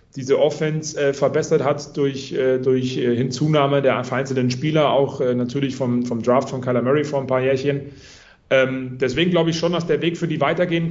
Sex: male